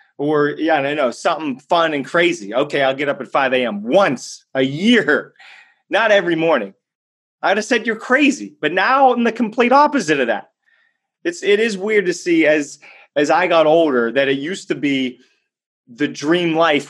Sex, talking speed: male, 195 wpm